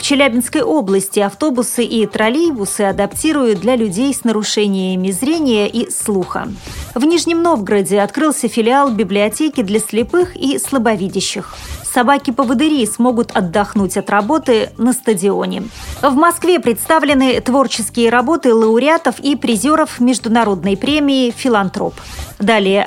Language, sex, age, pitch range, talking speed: Russian, female, 30-49, 215-280 Hz, 115 wpm